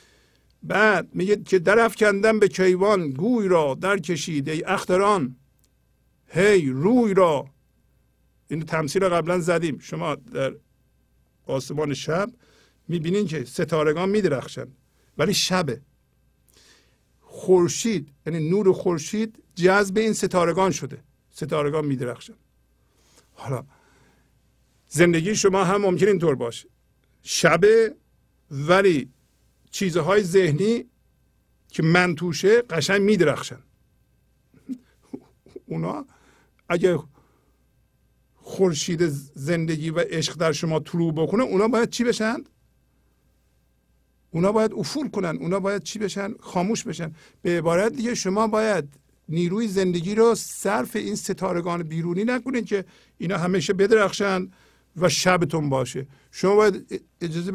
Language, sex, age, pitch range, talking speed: Persian, male, 50-69, 150-200 Hz, 105 wpm